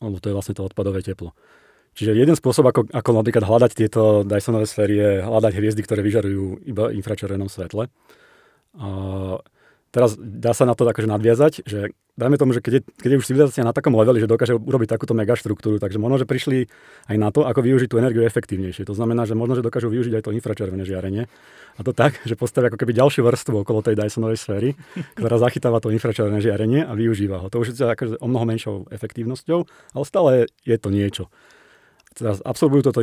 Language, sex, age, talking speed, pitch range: Slovak, male, 30-49, 200 wpm, 105-125 Hz